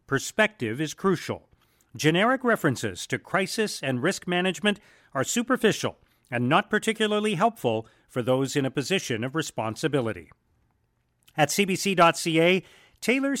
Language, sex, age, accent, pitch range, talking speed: English, male, 40-59, American, 135-195 Hz, 115 wpm